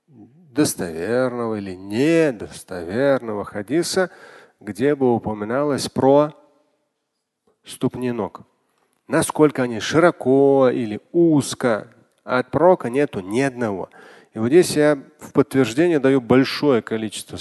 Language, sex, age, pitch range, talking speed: Russian, male, 30-49, 115-160 Hz, 105 wpm